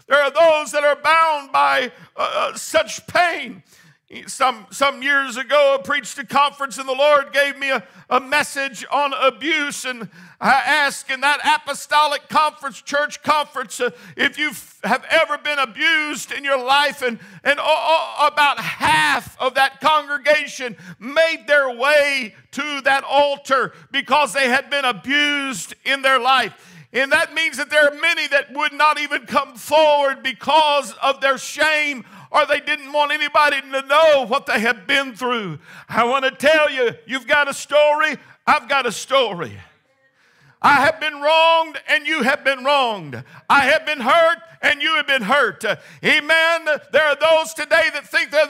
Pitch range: 270-305 Hz